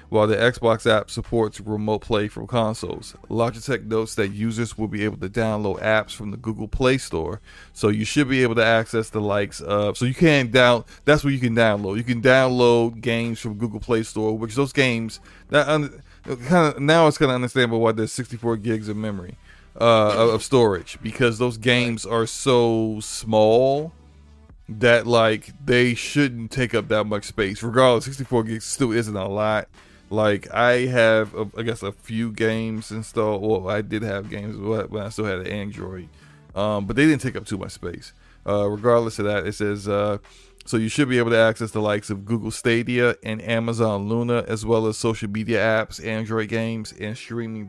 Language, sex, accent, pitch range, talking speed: English, male, American, 105-120 Hz, 190 wpm